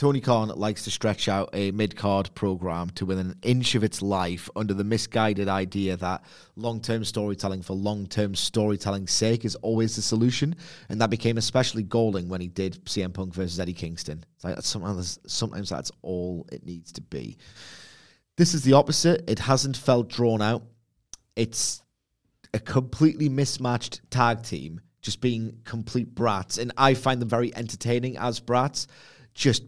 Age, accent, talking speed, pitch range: 30-49, British, 170 wpm, 100-125 Hz